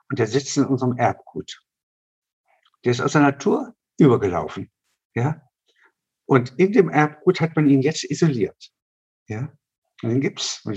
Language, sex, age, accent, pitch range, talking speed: German, male, 60-79, German, 120-150 Hz, 155 wpm